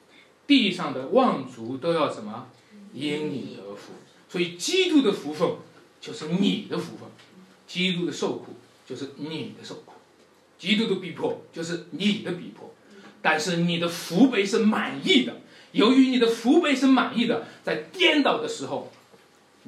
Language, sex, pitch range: Chinese, male, 115-180 Hz